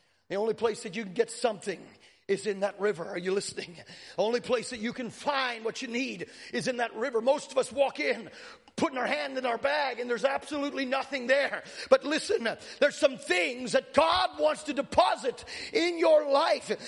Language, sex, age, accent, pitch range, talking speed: English, male, 40-59, American, 245-325 Hz, 205 wpm